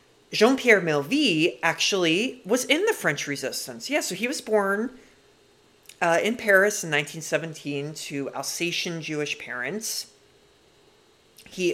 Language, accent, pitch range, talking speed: English, American, 140-190 Hz, 120 wpm